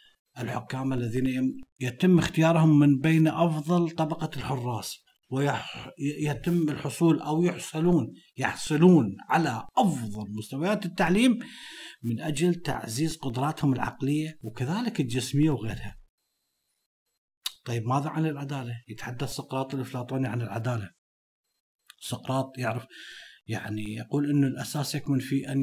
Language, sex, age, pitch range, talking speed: Arabic, male, 50-69, 125-160 Hz, 105 wpm